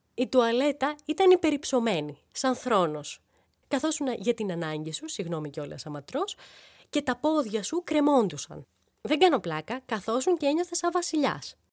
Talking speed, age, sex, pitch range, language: 140 wpm, 20-39, female, 175-290 Hz, Greek